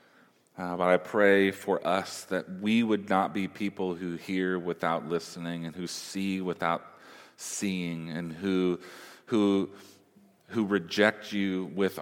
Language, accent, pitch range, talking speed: English, American, 85-100 Hz, 140 wpm